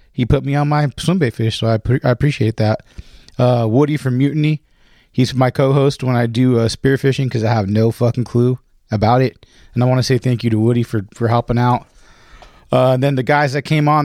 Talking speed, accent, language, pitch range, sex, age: 240 wpm, American, English, 110-130 Hz, male, 30-49